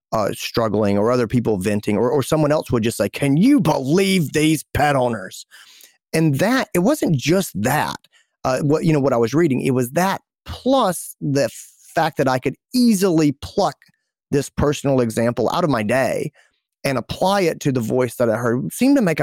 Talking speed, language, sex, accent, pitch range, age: 195 wpm, English, male, American, 105-150 Hz, 30-49